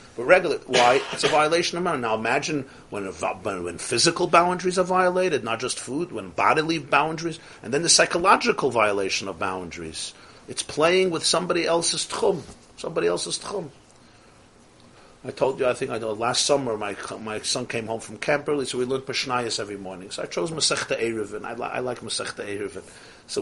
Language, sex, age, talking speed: English, male, 50-69, 190 wpm